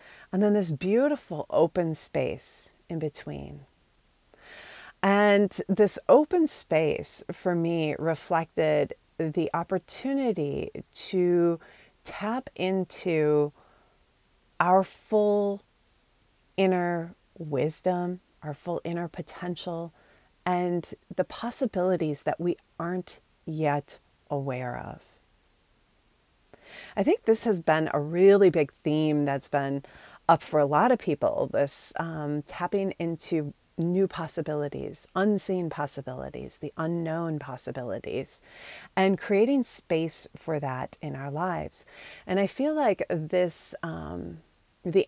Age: 30-49